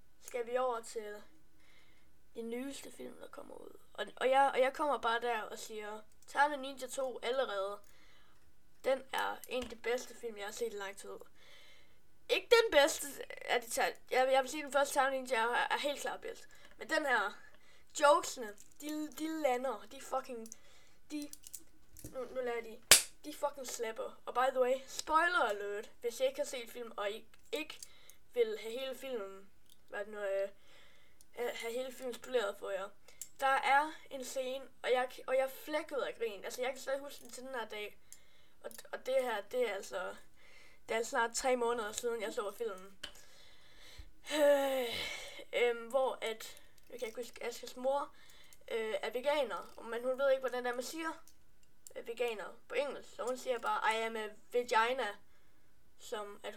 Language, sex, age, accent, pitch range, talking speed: Danish, female, 20-39, native, 235-320 Hz, 180 wpm